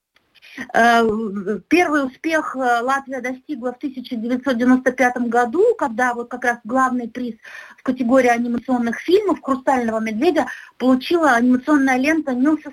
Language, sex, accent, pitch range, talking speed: Russian, female, native, 235-285 Hz, 110 wpm